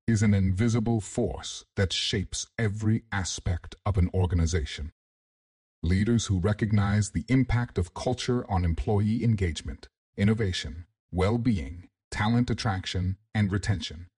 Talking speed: 115 wpm